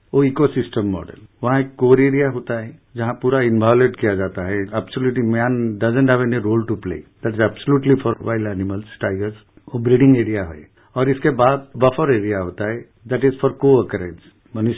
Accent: Indian